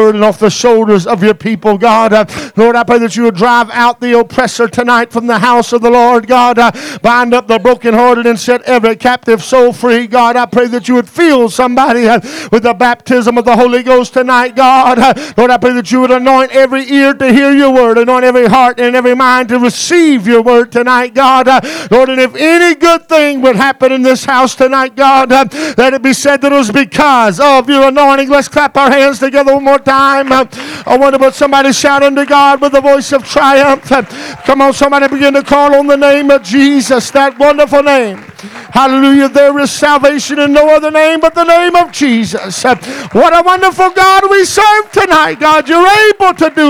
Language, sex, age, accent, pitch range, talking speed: English, male, 50-69, American, 235-280 Hz, 215 wpm